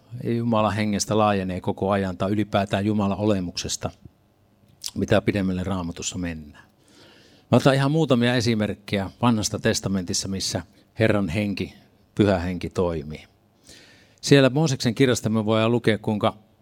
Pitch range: 95-115 Hz